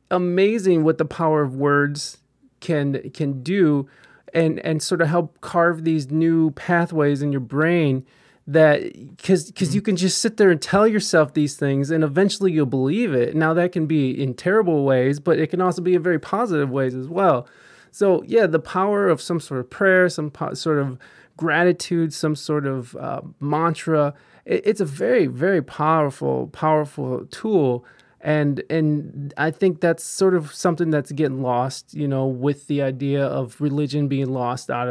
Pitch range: 140-175 Hz